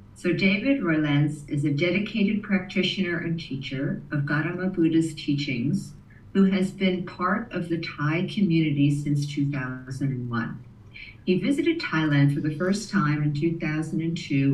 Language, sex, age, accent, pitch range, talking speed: English, female, 50-69, American, 140-170 Hz, 130 wpm